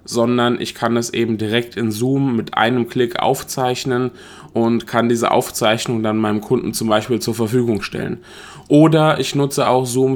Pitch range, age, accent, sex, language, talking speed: 115-130 Hz, 20-39, German, male, German, 170 wpm